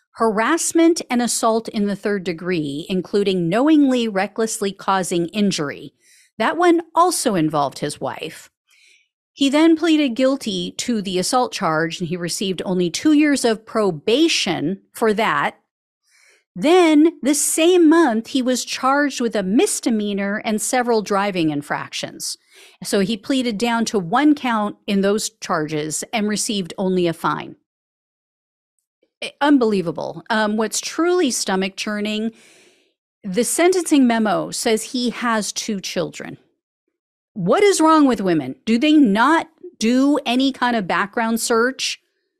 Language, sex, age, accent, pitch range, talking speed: English, female, 40-59, American, 190-290 Hz, 130 wpm